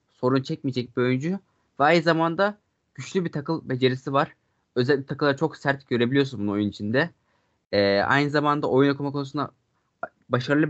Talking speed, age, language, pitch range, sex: 150 wpm, 20-39, Turkish, 125-150 Hz, male